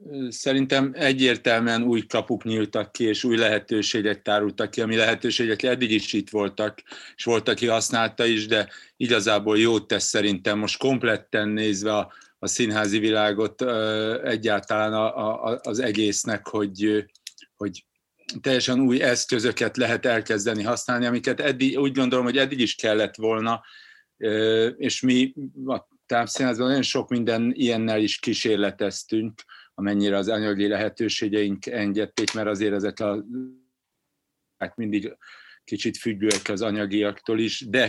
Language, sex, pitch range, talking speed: Hungarian, male, 105-120 Hz, 130 wpm